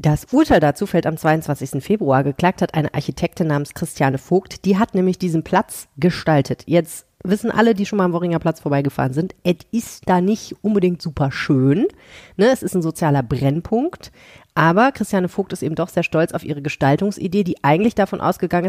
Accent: German